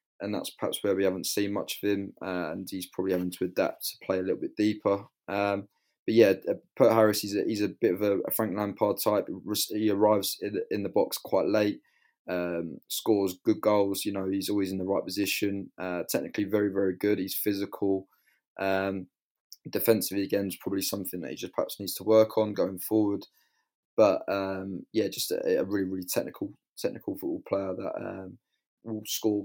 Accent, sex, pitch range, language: British, male, 95-110 Hz, English